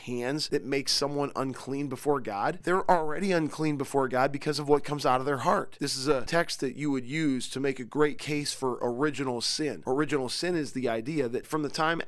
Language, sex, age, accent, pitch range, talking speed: English, male, 40-59, American, 125-150 Hz, 225 wpm